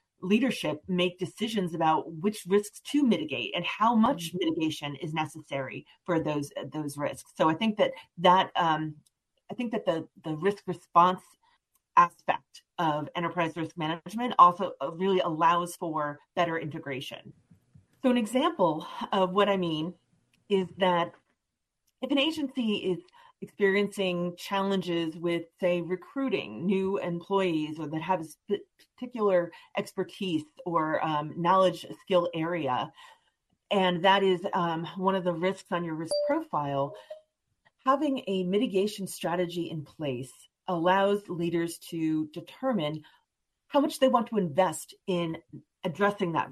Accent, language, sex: American, English, female